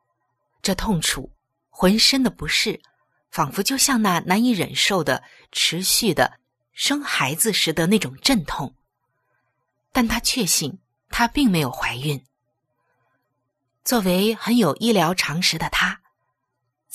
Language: Chinese